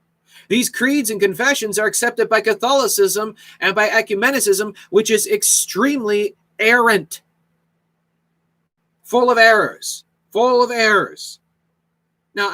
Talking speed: 105 wpm